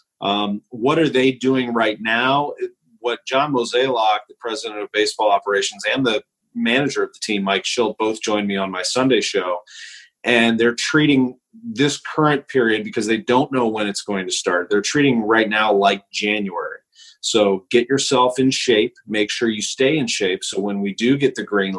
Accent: American